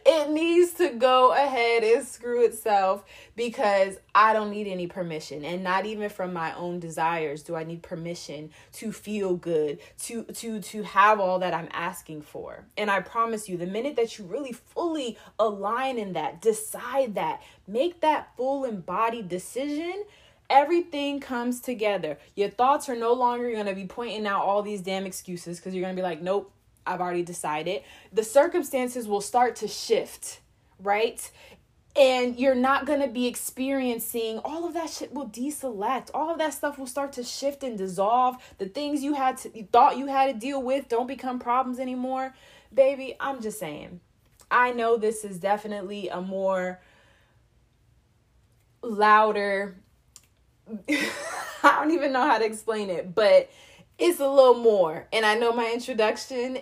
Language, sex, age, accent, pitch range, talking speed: English, female, 20-39, American, 195-265 Hz, 170 wpm